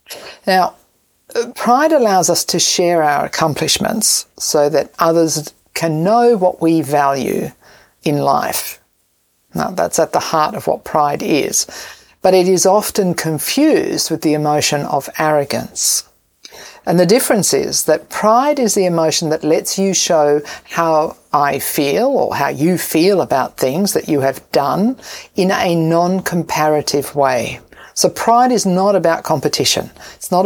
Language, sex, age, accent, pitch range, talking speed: English, female, 50-69, Australian, 155-200 Hz, 150 wpm